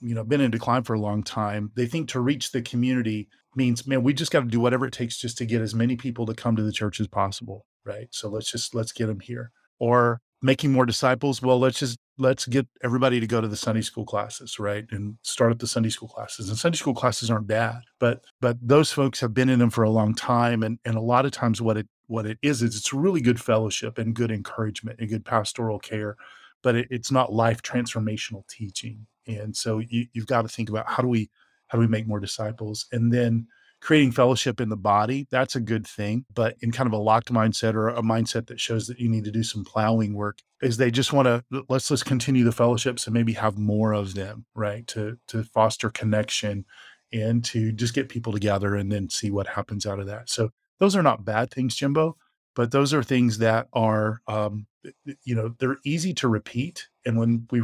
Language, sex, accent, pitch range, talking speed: English, male, American, 110-125 Hz, 235 wpm